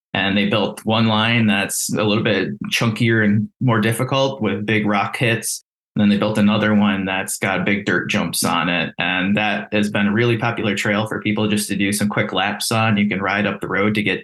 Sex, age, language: male, 20-39, English